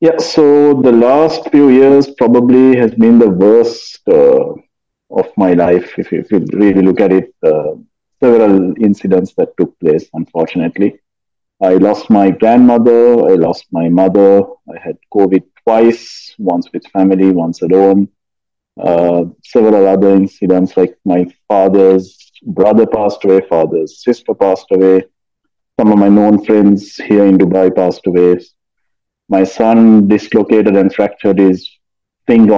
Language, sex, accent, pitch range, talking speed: English, male, Indian, 95-120 Hz, 140 wpm